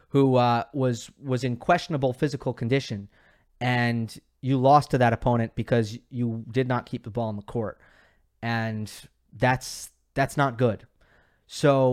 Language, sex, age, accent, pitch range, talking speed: English, male, 30-49, American, 115-140 Hz, 150 wpm